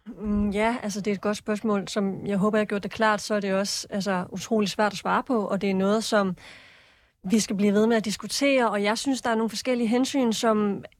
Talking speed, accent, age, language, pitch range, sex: 250 wpm, native, 20-39, Danish, 195-240 Hz, female